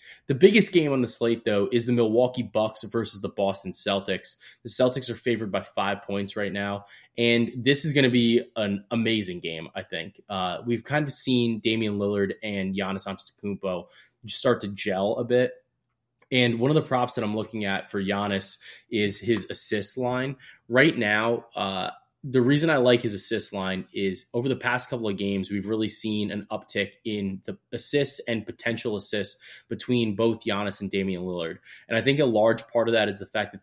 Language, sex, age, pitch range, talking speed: English, male, 20-39, 100-125 Hz, 200 wpm